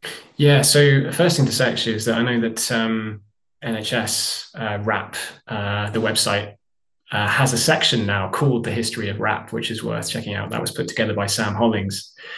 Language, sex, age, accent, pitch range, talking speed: English, male, 20-39, British, 110-125 Hz, 200 wpm